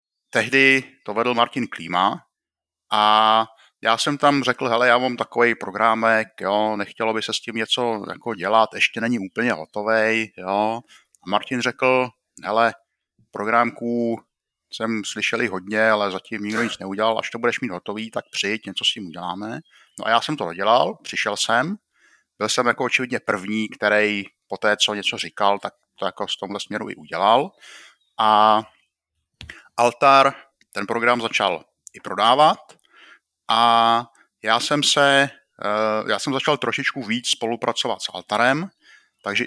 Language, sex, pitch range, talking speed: Czech, male, 105-120 Hz, 150 wpm